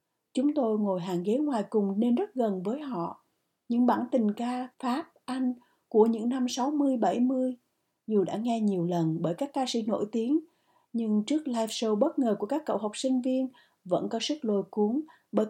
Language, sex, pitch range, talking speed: Vietnamese, female, 210-265 Hz, 200 wpm